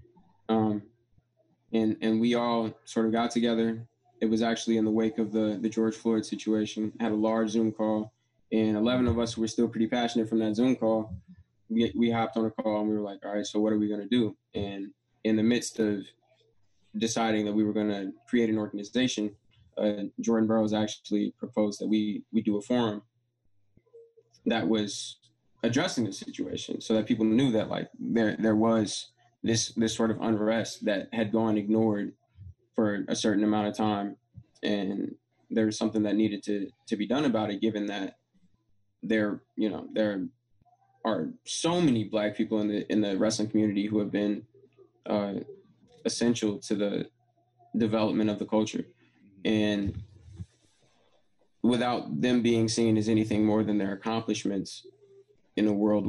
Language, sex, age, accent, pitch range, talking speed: English, male, 20-39, American, 105-115 Hz, 175 wpm